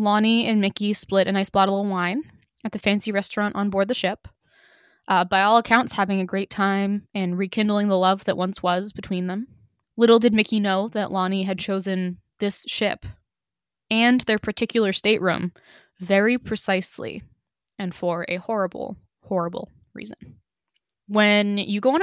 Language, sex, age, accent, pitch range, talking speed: English, female, 10-29, American, 190-215 Hz, 165 wpm